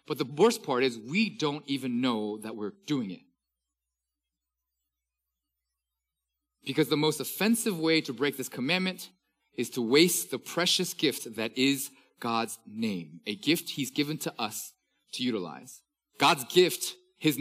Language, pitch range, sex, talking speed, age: English, 110-175 Hz, male, 150 wpm, 30-49